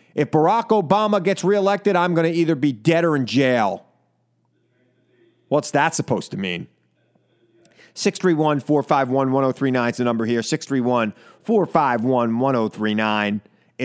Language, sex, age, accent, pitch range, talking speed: English, male, 30-49, American, 110-155 Hz, 110 wpm